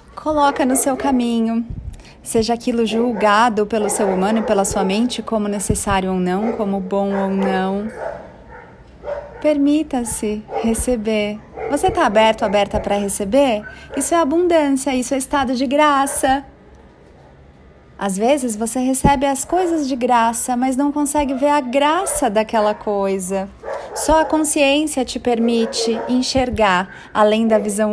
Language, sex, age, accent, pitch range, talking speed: Portuguese, female, 30-49, Brazilian, 205-280 Hz, 135 wpm